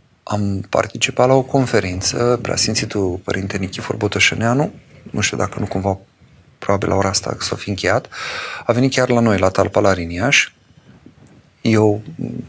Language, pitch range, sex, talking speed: Romanian, 95-115 Hz, male, 150 wpm